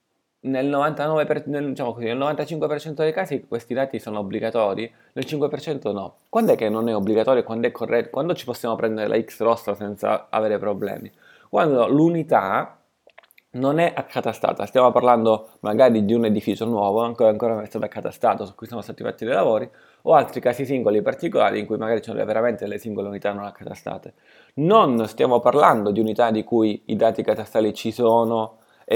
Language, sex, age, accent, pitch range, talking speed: Italian, male, 20-39, native, 105-130 Hz, 185 wpm